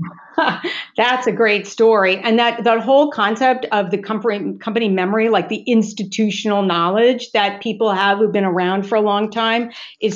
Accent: American